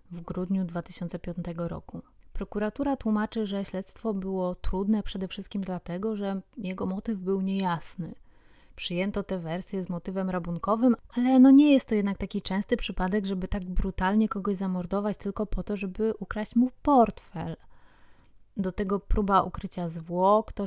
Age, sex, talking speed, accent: 20-39, female, 145 wpm, native